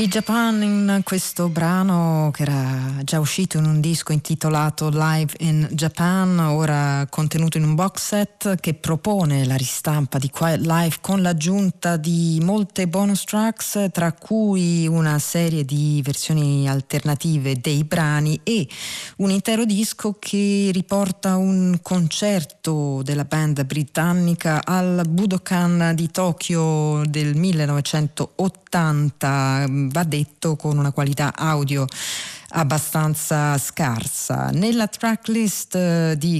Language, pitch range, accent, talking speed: Italian, 145-180 Hz, native, 120 wpm